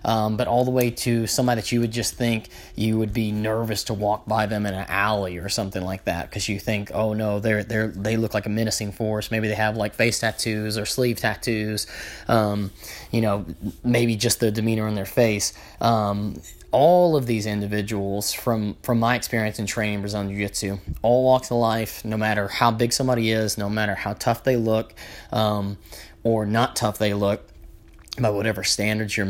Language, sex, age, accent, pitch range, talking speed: English, male, 20-39, American, 105-115 Hz, 200 wpm